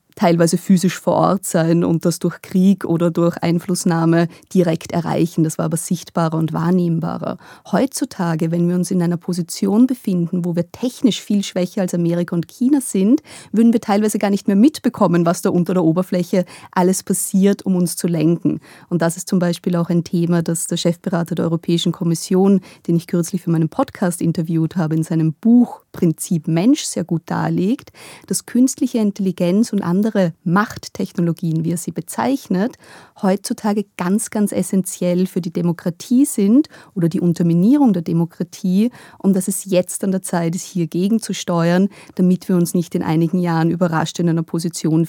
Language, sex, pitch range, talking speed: German, female, 170-195 Hz, 175 wpm